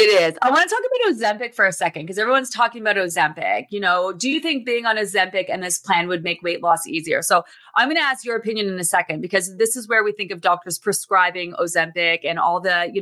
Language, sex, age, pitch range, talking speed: English, female, 30-49, 180-230 Hz, 260 wpm